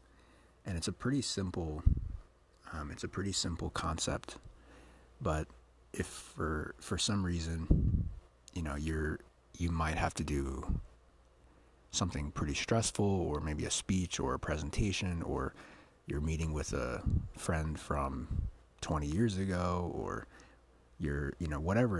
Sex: male